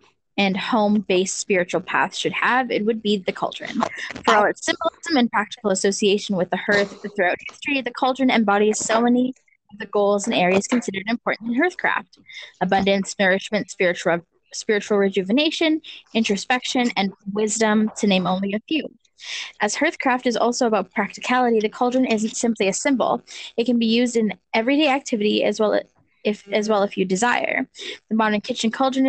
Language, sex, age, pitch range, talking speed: English, female, 10-29, 200-250 Hz, 165 wpm